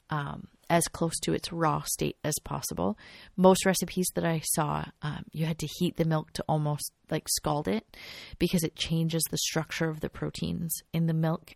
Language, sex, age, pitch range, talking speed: English, female, 30-49, 150-175 Hz, 185 wpm